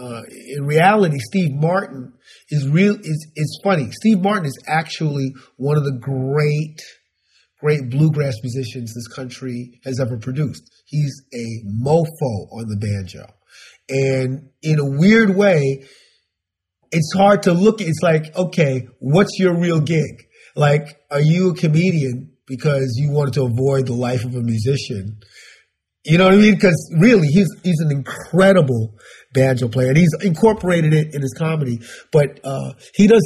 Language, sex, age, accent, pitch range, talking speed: English, male, 30-49, American, 125-165 Hz, 160 wpm